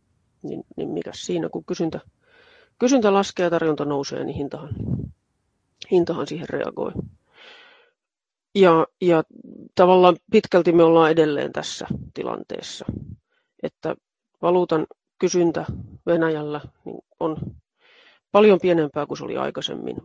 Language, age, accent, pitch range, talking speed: Finnish, 40-59, native, 150-185 Hz, 110 wpm